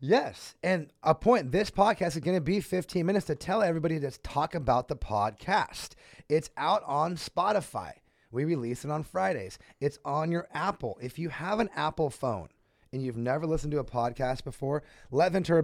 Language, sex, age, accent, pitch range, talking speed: English, male, 30-49, American, 120-160 Hz, 190 wpm